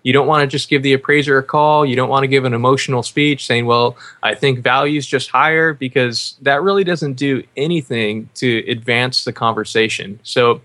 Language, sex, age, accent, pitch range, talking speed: English, male, 20-39, American, 125-150 Hz, 210 wpm